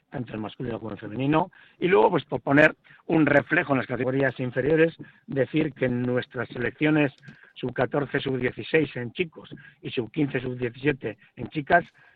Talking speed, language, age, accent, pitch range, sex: 155 wpm, Spanish, 60-79, Spanish, 125-155 Hz, male